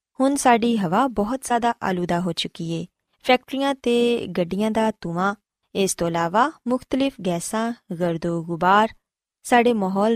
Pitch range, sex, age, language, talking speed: 180-240 Hz, female, 20-39, Punjabi, 135 wpm